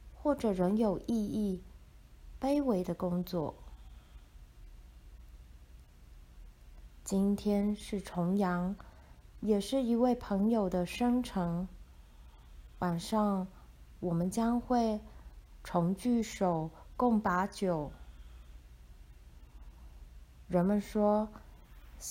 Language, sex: Chinese, female